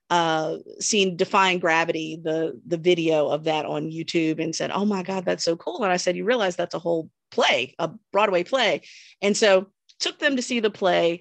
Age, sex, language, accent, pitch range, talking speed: 40-59, female, English, American, 160-200 Hz, 210 wpm